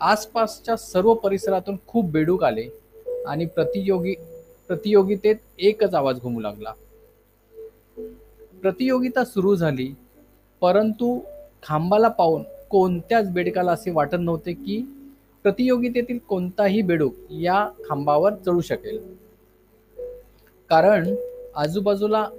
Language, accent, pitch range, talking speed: Marathi, native, 155-230 Hz, 85 wpm